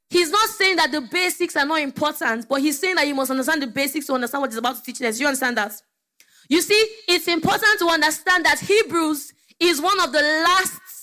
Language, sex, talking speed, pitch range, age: English, female, 230 wpm, 275-360 Hz, 20-39